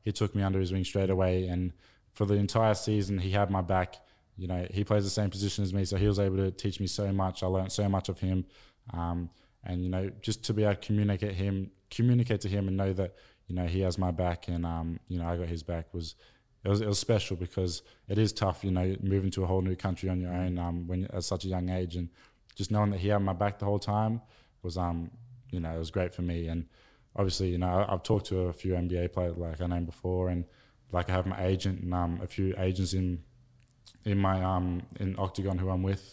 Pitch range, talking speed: 90-100 Hz, 255 wpm